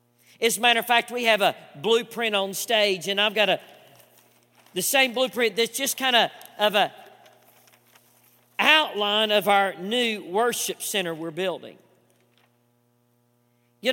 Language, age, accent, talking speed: English, 40-59, American, 140 wpm